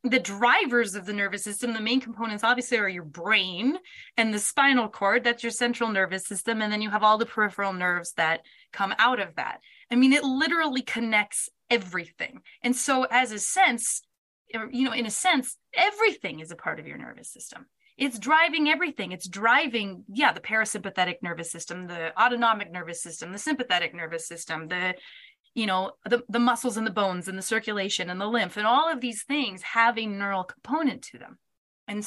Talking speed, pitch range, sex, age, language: 195 wpm, 195-260 Hz, female, 20-39, English